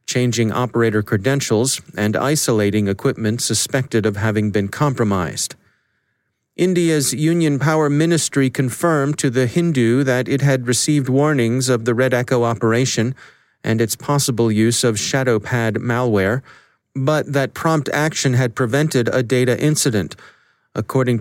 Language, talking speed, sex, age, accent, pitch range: English, 135 wpm, male, 40-59, American, 110-135 Hz